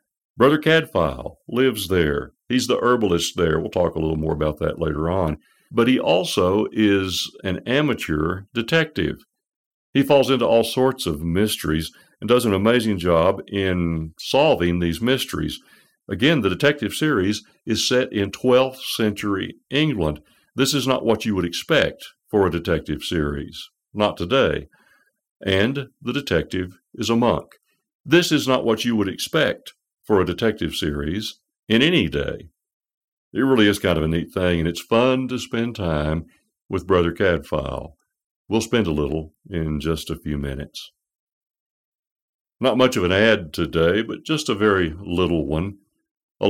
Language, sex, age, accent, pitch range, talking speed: English, male, 60-79, American, 80-115 Hz, 155 wpm